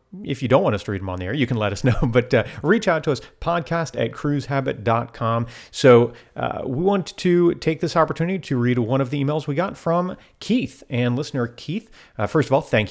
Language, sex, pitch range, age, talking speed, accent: English, male, 115-170 Hz, 40-59, 235 wpm, American